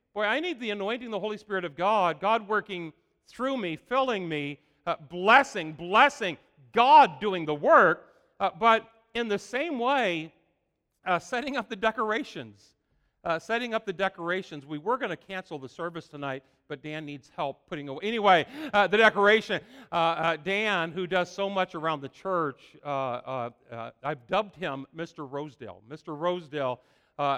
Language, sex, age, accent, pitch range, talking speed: English, male, 50-69, American, 155-225 Hz, 175 wpm